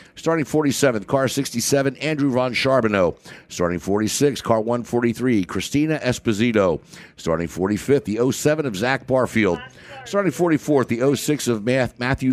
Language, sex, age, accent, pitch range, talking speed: English, male, 60-79, American, 105-135 Hz, 125 wpm